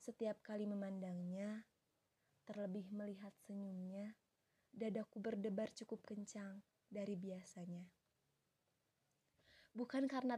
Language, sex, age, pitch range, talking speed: Indonesian, female, 20-39, 185-210 Hz, 80 wpm